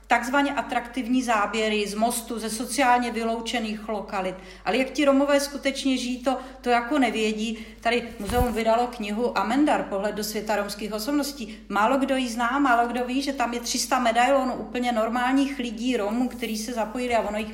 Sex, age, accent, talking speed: female, 40-59, native, 175 wpm